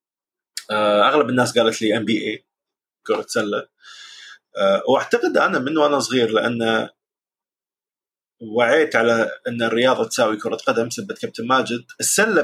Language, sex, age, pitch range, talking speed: Arabic, male, 30-49, 115-175 Hz, 125 wpm